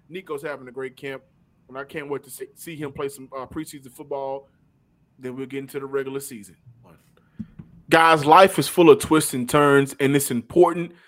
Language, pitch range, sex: English, 130-155 Hz, male